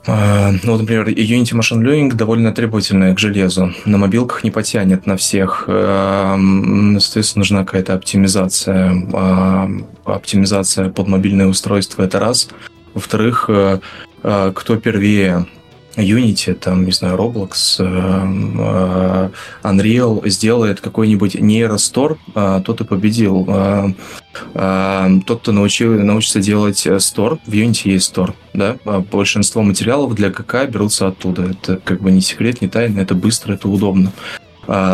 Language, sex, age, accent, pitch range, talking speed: Russian, male, 20-39, native, 95-105 Hz, 135 wpm